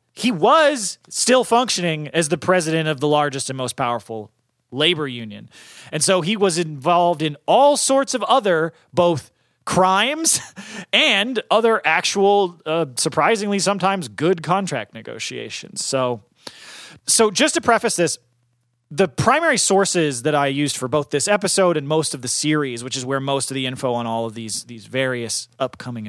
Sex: male